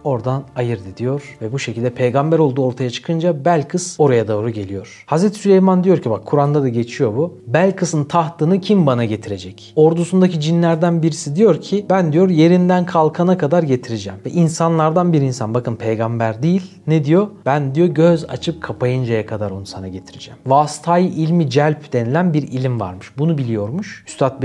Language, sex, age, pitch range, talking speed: Turkish, male, 40-59, 125-170 Hz, 165 wpm